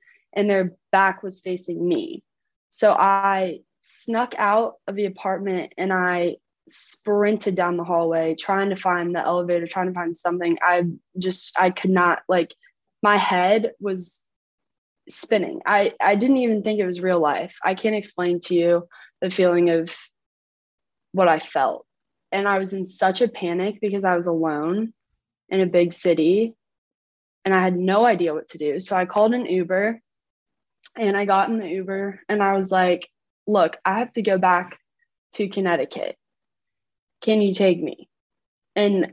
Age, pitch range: 20-39, 175-200 Hz